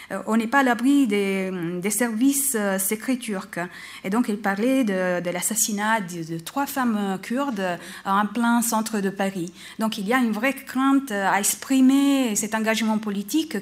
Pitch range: 190-240 Hz